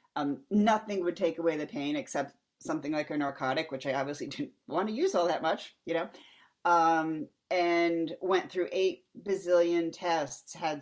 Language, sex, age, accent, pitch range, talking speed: English, female, 40-59, American, 145-185 Hz, 175 wpm